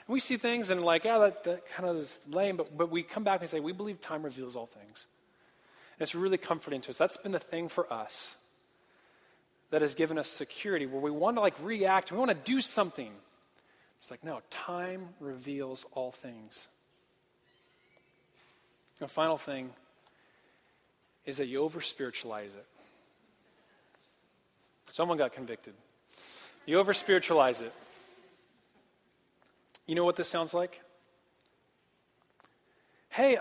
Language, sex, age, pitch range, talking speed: English, male, 30-49, 150-255 Hz, 145 wpm